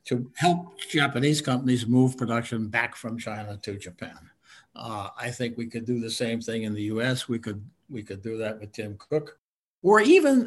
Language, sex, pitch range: English, male, 115-155 Hz